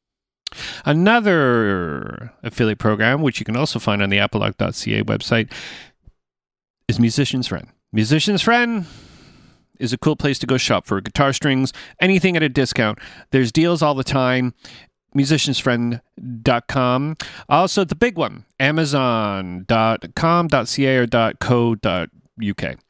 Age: 40-59